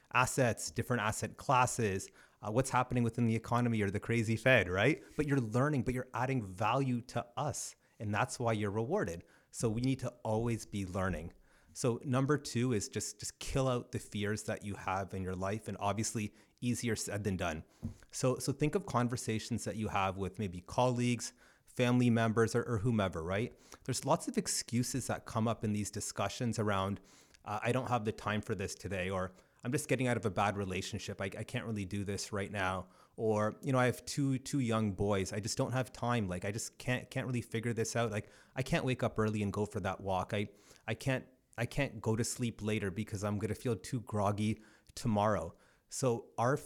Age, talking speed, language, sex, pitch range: 30-49, 210 wpm, English, male, 100-125 Hz